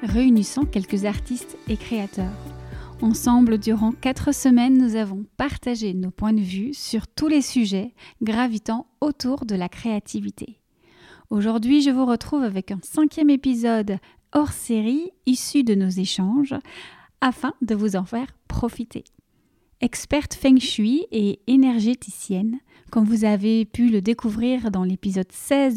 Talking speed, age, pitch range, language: 135 wpm, 30-49, 210-260 Hz, French